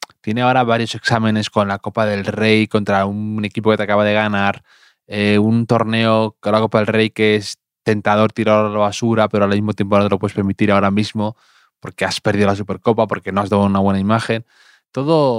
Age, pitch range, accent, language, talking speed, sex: 20-39, 100-120 Hz, Spanish, Spanish, 215 wpm, male